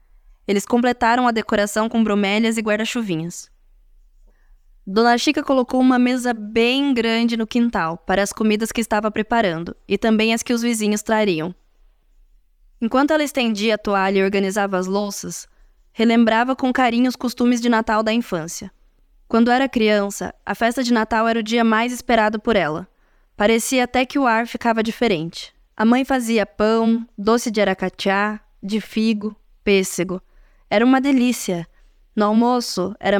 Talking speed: 155 wpm